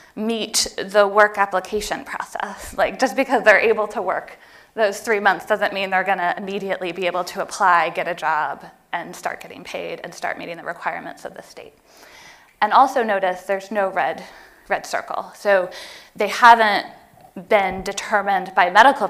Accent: American